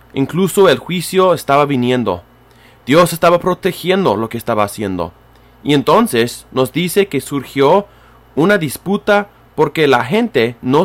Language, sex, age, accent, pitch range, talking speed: English, male, 30-49, Mexican, 125-170 Hz, 135 wpm